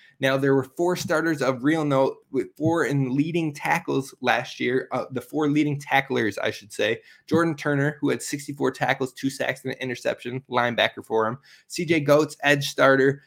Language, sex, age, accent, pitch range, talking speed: English, male, 20-39, American, 130-155 Hz, 190 wpm